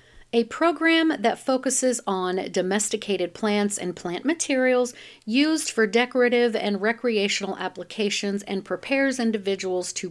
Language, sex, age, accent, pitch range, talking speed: English, female, 40-59, American, 190-250 Hz, 120 wpm